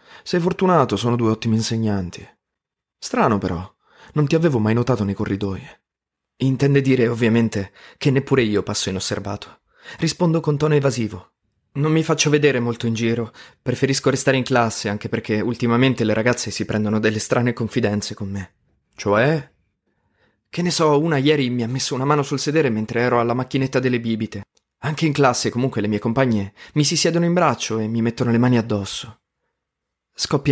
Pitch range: 105-140 Hz